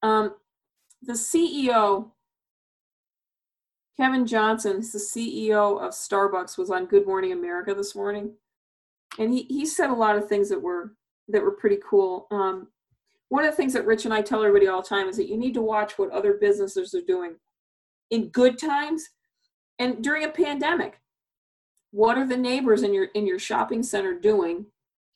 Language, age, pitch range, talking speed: English, 40-59, 200-285 Hz, 175 wpm